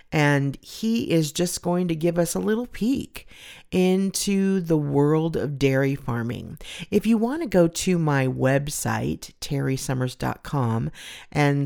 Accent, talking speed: American, 140 wpm